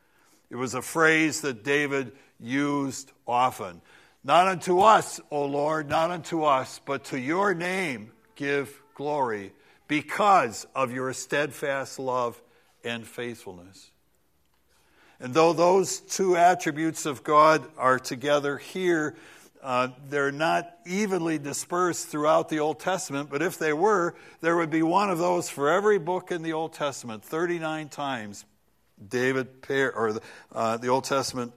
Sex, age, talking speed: male, 60-79, 145 wpm